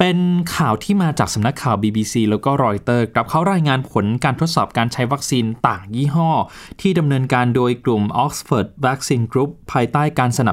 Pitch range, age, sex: 120-165 Hz, 20-39, male